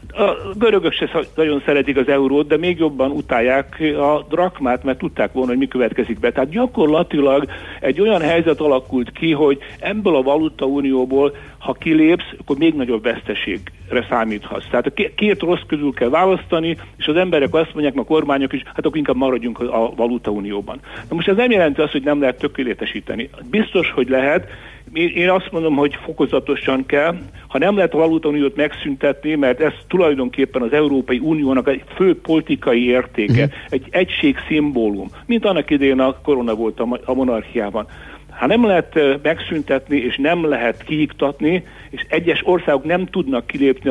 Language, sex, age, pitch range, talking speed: Hungarian, male, 60-79, 125-155 Hz, 165 wpm